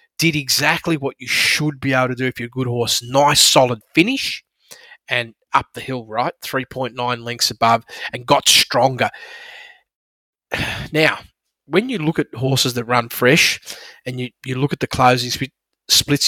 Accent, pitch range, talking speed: Australian, 125-150 Hz, 170 wpm